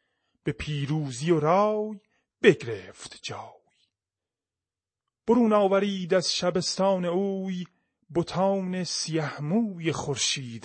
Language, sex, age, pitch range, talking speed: Persian, male, 30-49, 145-200 Hz, 80 wpm